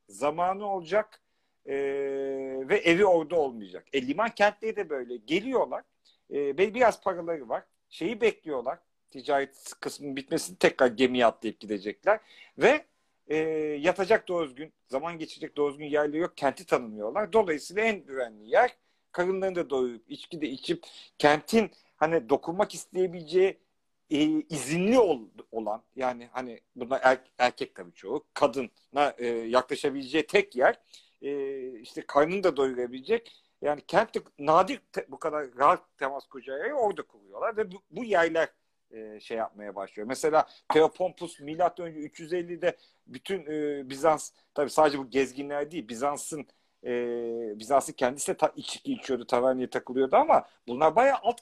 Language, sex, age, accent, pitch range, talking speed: Turkish, male, 50-69, native, 130-190 Hz, 135 wpm